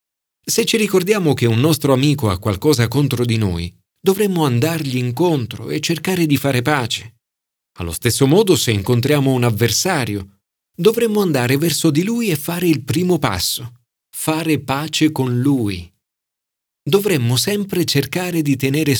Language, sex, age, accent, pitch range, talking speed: Italian, male, 40-59, native, 115-165 Hz, 145 wpm